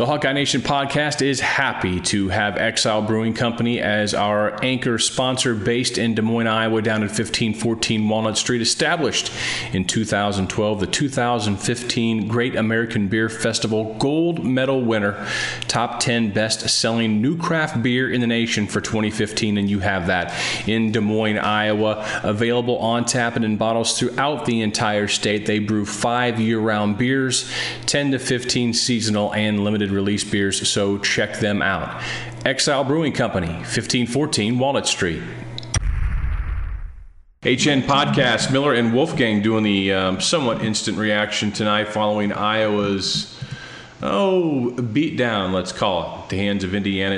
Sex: male